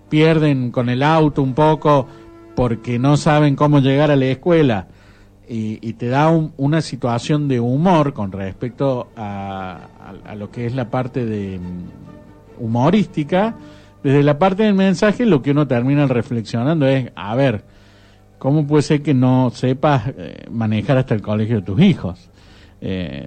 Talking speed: 160 wpm